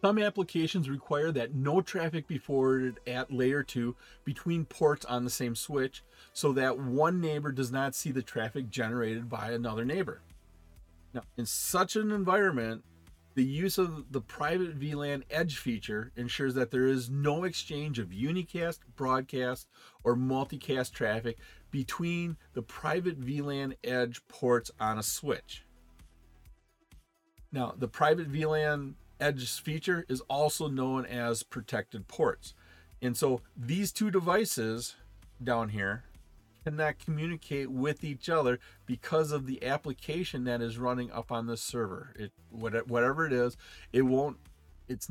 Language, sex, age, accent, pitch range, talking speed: English, male, 40-59, American, 120-150 Hz, 140 wpm